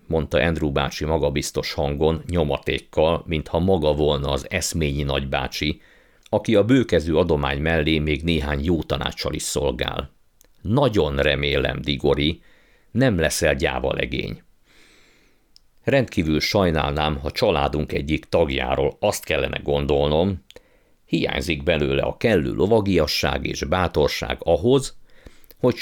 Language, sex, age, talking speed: Hungarian, male, 50-69, 110 wpm